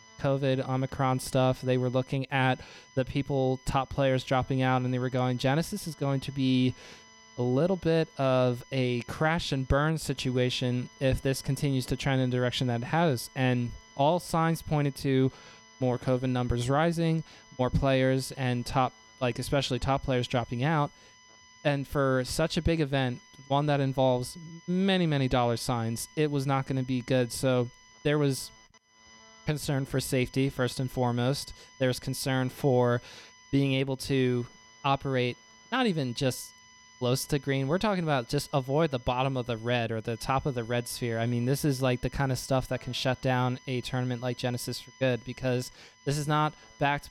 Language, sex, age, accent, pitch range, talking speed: English, male, 20-39, American, 125-140 Hz, 185 wpm